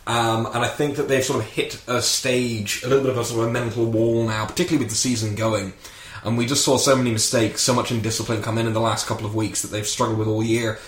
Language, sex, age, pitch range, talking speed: English, male, 10-29, 110-125 Hz, 280 wpm